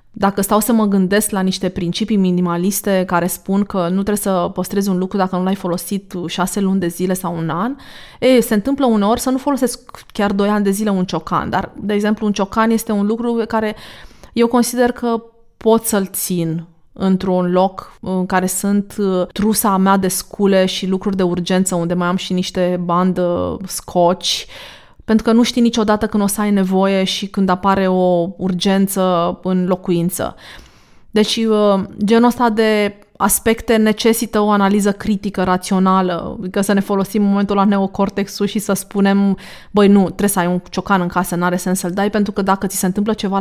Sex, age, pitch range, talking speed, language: female, 20-39, 185-215 Hz, 190 wpm, Romanian